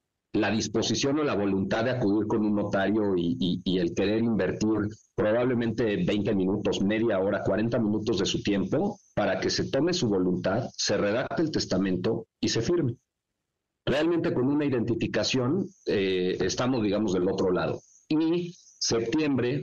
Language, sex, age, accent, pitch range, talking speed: Spanish, male, 50-69, Mexican, 95-115 Hz, 155 wpm